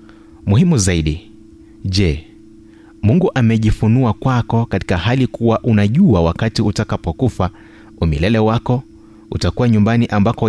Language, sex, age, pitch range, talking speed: Swahili, male, 30-49, 95-120 Hz, 95 wpm